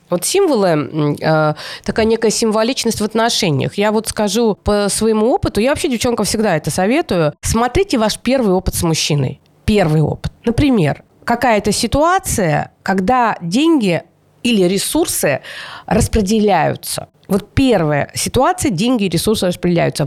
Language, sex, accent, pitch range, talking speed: Russian, female, native, 175-245 Hz, 125 wpm